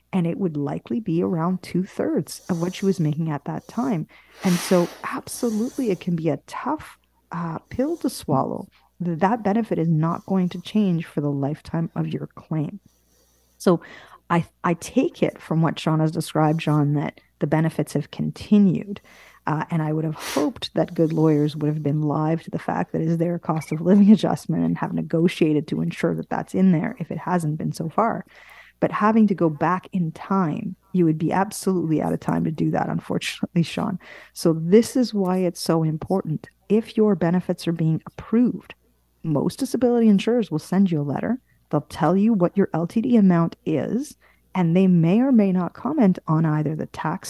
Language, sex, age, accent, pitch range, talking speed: English, female, 30-49, American, 160-205 Hz, 195 wpm